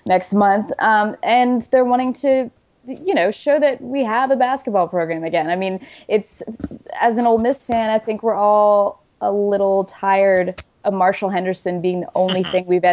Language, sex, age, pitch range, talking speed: English, female, 20-39, 180-230 Hz, 185 wpm